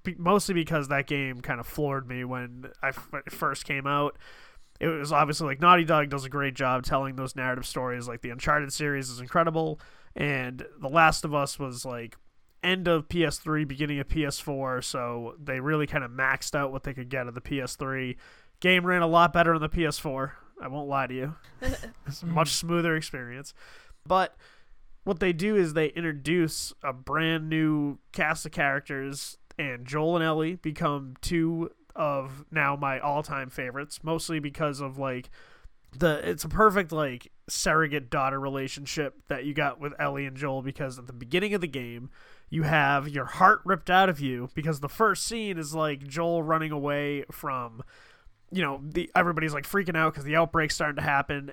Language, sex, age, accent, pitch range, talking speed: English, male, 20-39, American, 135-160 Hz, 185 wpm